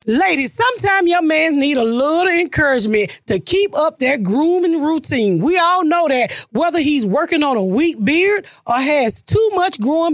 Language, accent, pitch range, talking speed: English, American, 245-355 Hz, 180 wpm